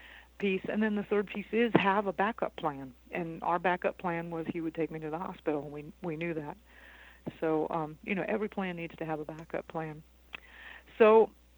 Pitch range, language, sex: 165-215 Hz, English, female